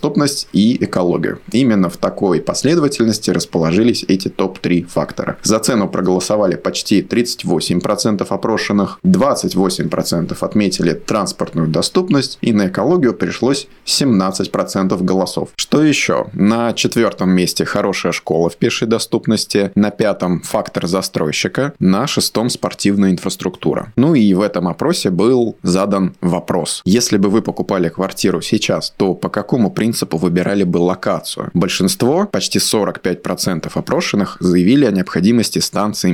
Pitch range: 90-115 Hz